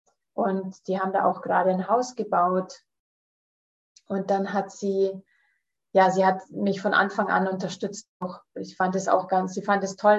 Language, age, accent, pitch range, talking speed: German, 30-49, German, 180-205 Hz, 185 wpm